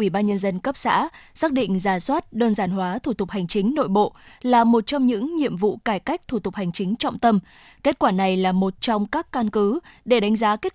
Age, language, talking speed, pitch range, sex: 20-39, Vietnamese, 255 wpm, 205-255 Hz, female